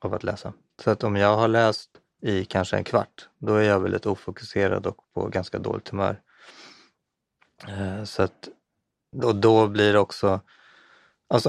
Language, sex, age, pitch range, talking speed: Swedish, male, 30-49, 100-115 Hz, 160 wpm